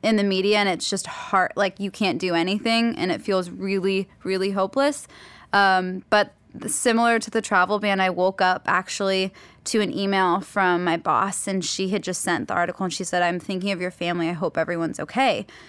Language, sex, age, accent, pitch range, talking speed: English, female, 10-29, American, 190-220 Hz, 205 wpm